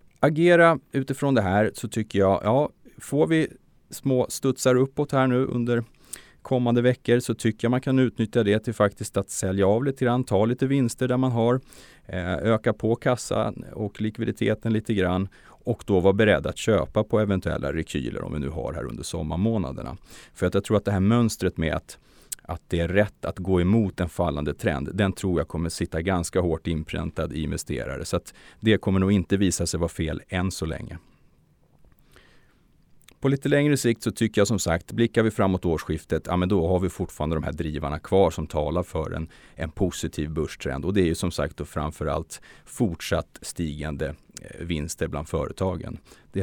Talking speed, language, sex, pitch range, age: 190 wpm, Swedish, male, 80-120 Hz, 30-49